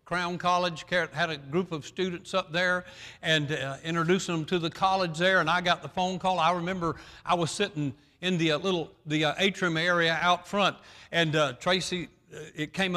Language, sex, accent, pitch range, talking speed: English, male, American, 145-195 Hz, 205 wpm